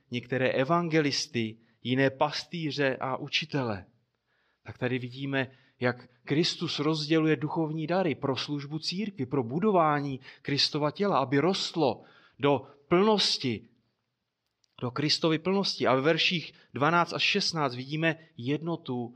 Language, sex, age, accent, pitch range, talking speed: Czech, male, 30-49, native, 130-175 Hz, 115 wpm